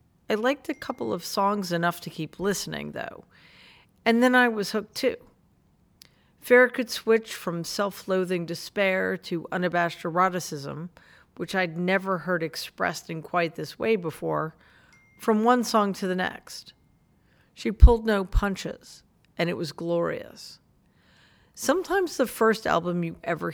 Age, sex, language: 40-59, female, English